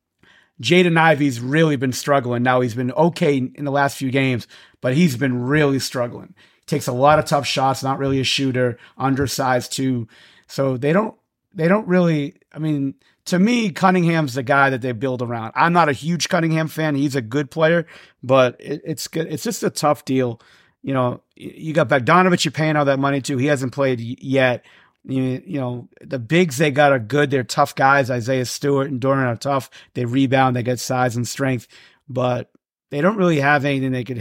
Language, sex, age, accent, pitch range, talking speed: English, male, 40-59, American, 125-150 Hz, 200 wpm